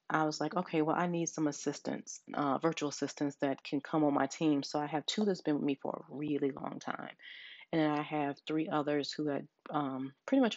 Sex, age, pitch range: female, 30-49, 145-175 Hz